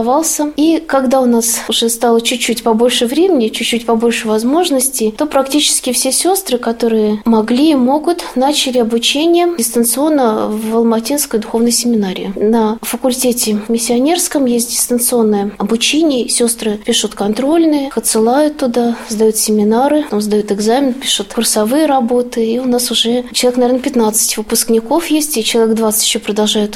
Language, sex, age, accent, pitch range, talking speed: Russian, female, 20-39, native, 225-260 Hz, 130 wpm